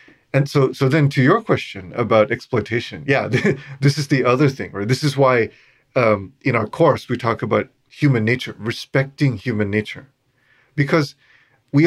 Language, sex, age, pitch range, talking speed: English, male, 30-49, 115-145 Hz, 165 wpm